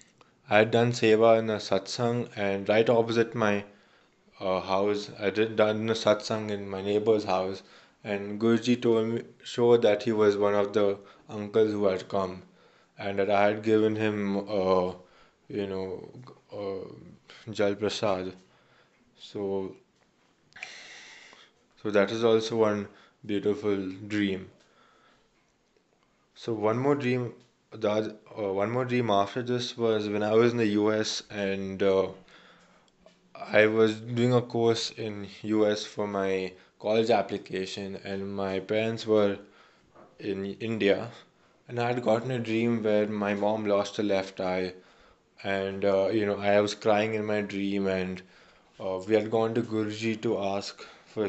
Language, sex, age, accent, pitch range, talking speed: Hindi, male, 20-39, native, 100-110 Hz, 145 wpm